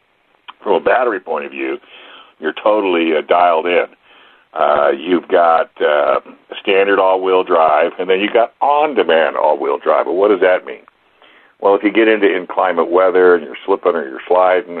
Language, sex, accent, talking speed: English, male, American, 175 wpm